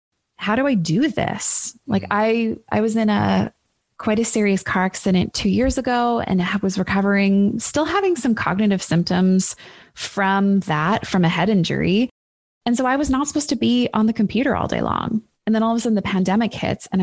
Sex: female